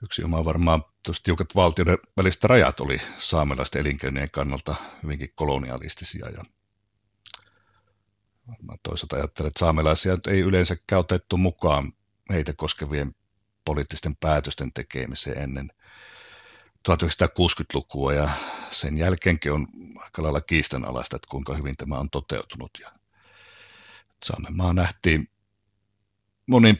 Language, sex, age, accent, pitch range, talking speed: Finnish, male, 60-79, native, 75-95 Hz, 105 wpm